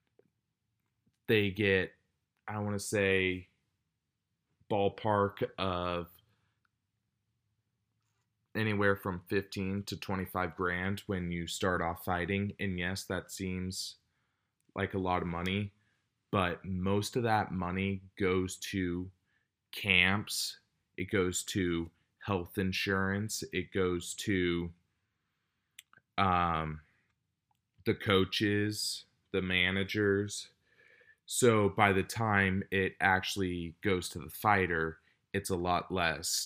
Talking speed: 105 wpm